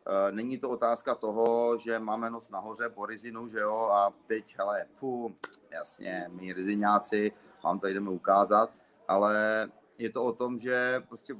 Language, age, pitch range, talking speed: Czech, 30-49, 110-125 Hz, 160 wpm